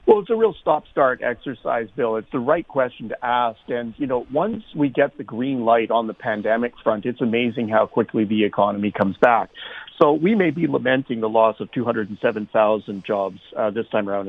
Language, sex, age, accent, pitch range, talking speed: English, male, 50-69, American, 110-140 Hz, 200 wpm